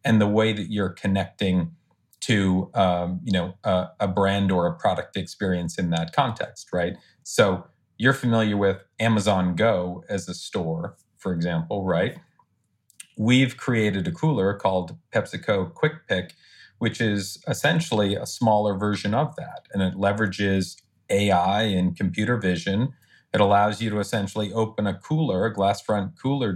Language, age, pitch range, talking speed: English, 40-59, 95-115 Hz, 155 wpm